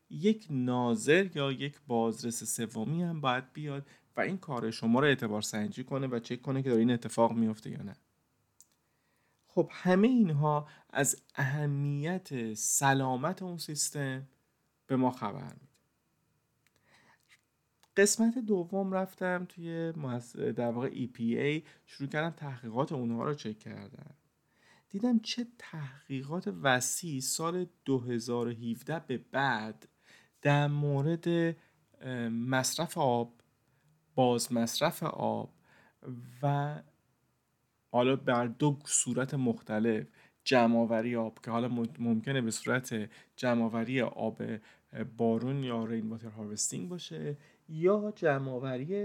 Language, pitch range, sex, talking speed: Persian, 120-155 Hz, male, 110 wpm